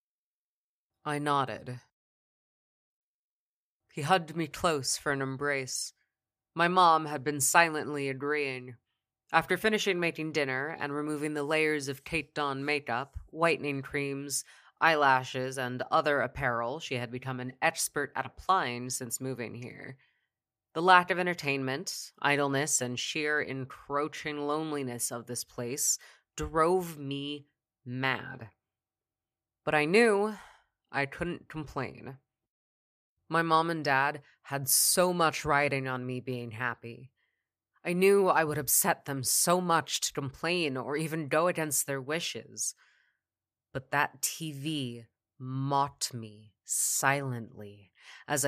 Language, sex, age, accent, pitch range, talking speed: English, female, 20-39, American, 125-155 Hz, 125 wpm